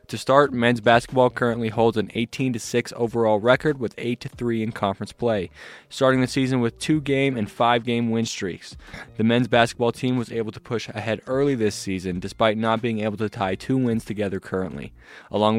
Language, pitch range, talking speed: English, 110-125 Hz, 180 wpm